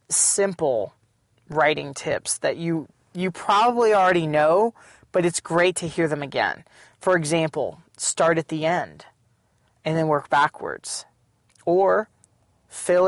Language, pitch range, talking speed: English, 160-190 Hz, 130 wpm